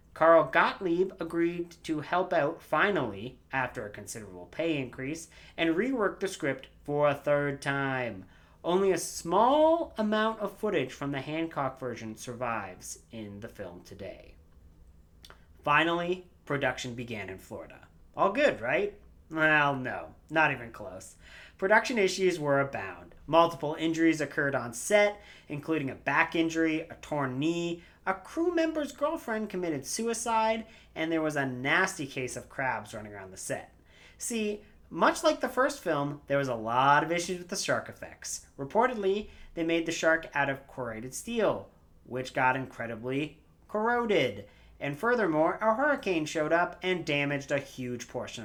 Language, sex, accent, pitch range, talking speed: English, male, American, 120-180 Hz, 150 wpm